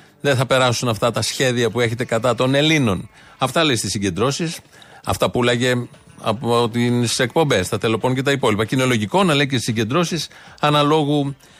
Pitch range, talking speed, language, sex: 120-160 Hz, 180 wpm, Greek, male